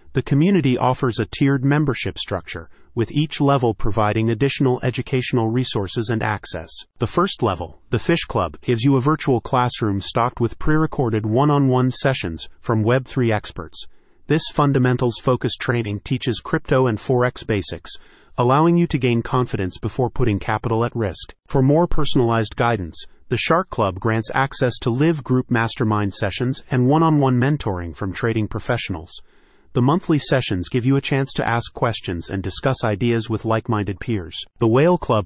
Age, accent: 30-49, American